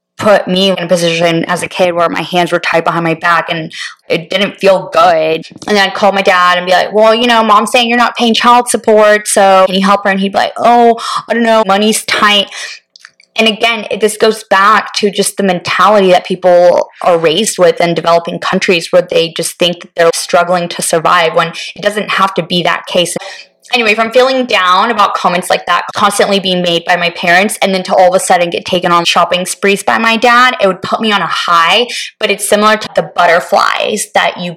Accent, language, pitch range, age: American, English, 175-220 Hz, 20-39